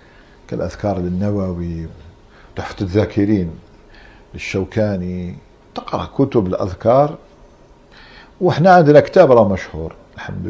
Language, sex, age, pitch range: Arabic, male, 50-69, 95-125 Hz